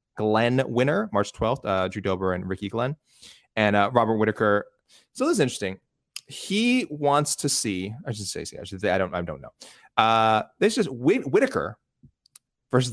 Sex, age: male, 30-49